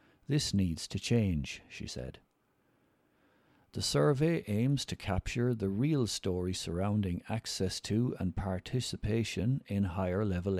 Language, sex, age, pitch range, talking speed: English, male, 60-79, 90-120 Hz, 125 wpm